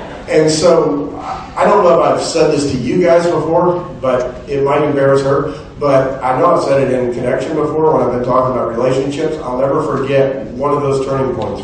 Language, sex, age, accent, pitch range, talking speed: English, male, 40-59, American, 125-165 Hz, 210 wpm